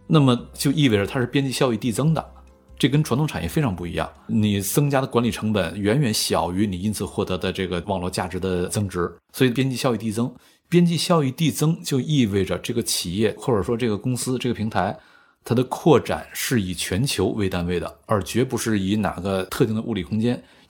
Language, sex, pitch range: Chinese, male, 100-130 Hz